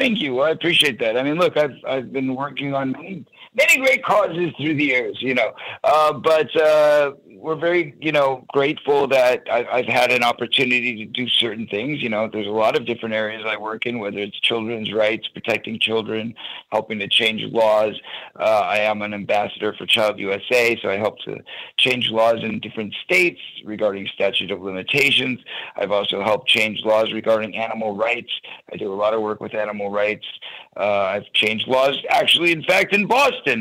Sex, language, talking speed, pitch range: male, English, 195 wpm, 110-135 Hz